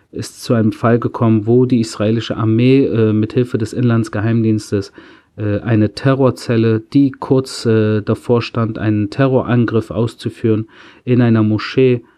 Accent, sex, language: German, male, German